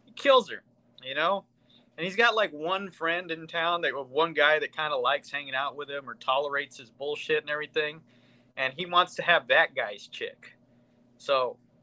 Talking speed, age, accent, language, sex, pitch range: 195 wpm, 30-49, American, English, male, 125-180 Hz